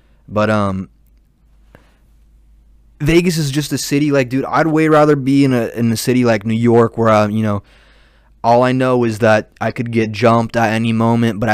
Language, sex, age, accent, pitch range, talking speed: English, male, 20-39, American, 110-130 Hz, 200 wpm